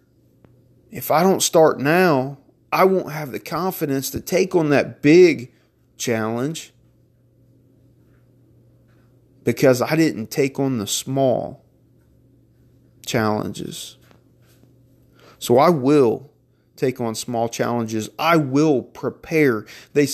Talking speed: 105 wpm